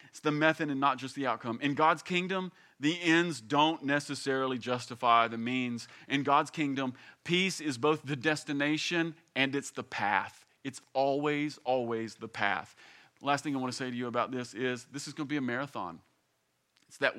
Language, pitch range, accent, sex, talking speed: English, 120-145 Hz, American, male, 190 wpm